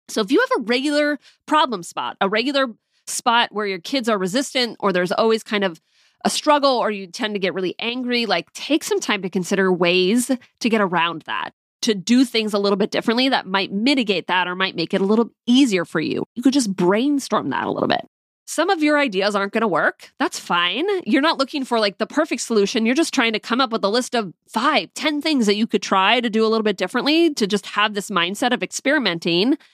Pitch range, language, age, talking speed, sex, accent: 195-260 Hz, English, 30-49, 235 wpm, female, American